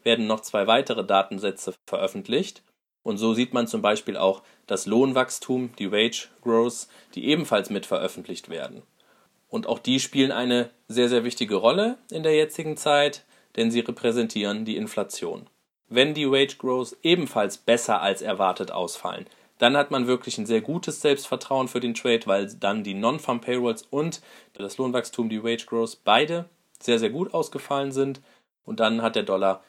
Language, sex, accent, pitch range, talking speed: German, male, German, 110-135 Hz, 170 wpm